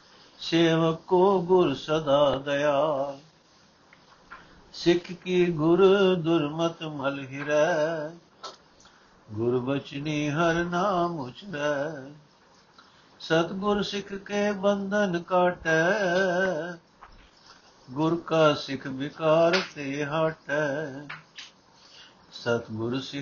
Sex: male